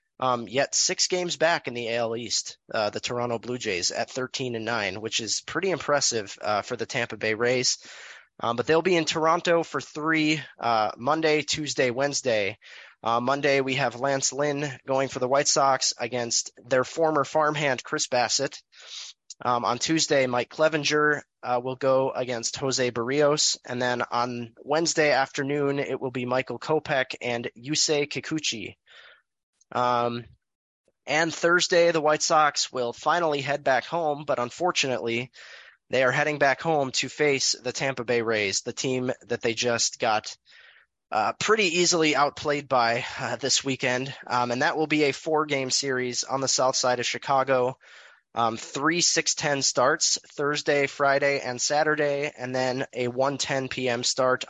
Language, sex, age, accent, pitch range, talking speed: English, male, 20-39, American, 125-150 Hz, 165 wpm